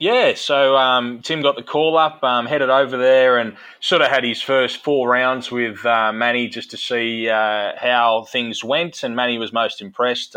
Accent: Australian